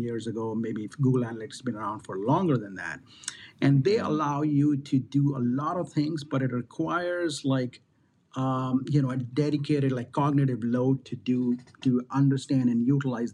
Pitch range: 125-150 Hz